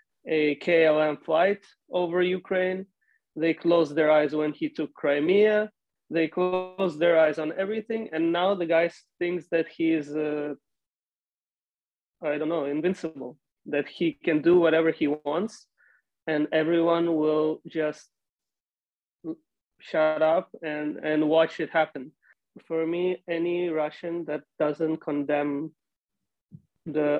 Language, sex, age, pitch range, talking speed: English, male, 20-39, 150-165 Hz, 130 wpm